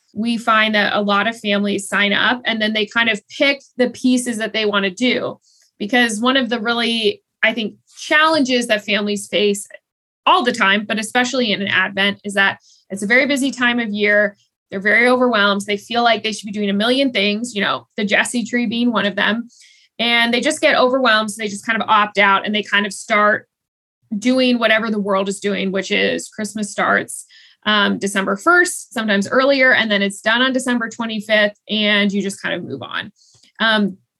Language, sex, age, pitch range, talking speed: English, female, 20-39, 200-240 Hz, 210 wpm